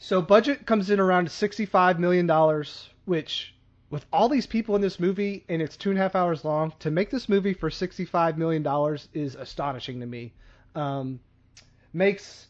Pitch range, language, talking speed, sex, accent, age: 140-180 Hz, English, 175 wpm, male, American, 30-49